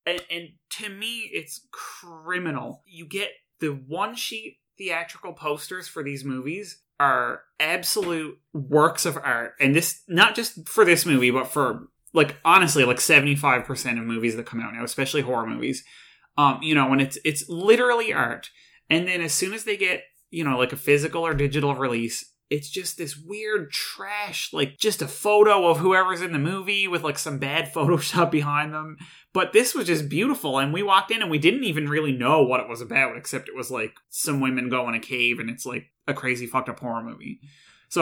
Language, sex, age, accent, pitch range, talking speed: English, male, 20-39, American, 130-170 Hz, 195 wpm